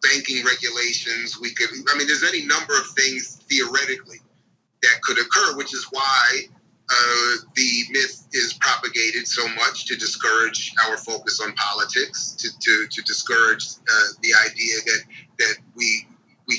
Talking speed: 150 wpm